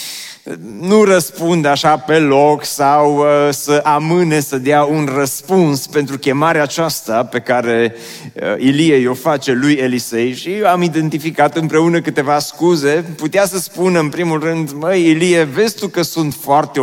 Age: 30-49